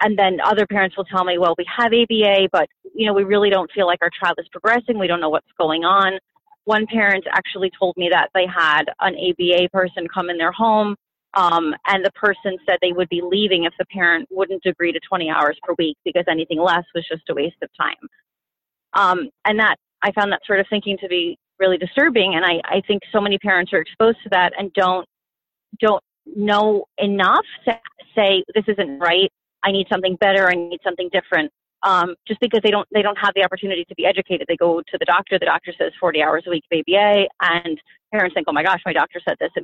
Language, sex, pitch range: English, female, 175-205 Hz